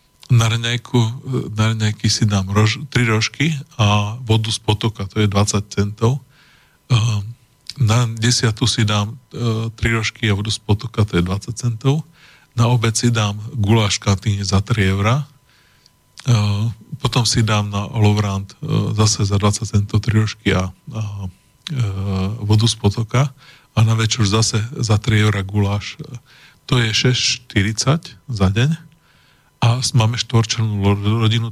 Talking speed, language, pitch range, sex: 140 wpm, Slovak, 105-120 Hz, male